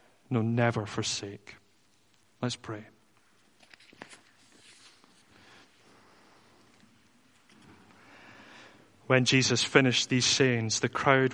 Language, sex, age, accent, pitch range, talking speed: English, male, 30-49, British, 110-125 Hz, 65 wpm